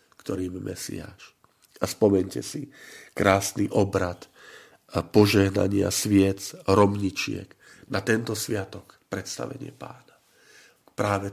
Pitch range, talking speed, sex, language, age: 95-105 Hz, 90 wpm, male, Slovak, 50-69